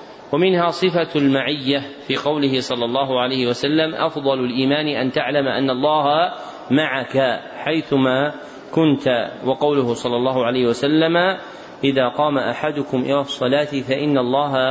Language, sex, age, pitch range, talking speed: Arabic, male, 40-59, 130-155 Hz, 120 wpm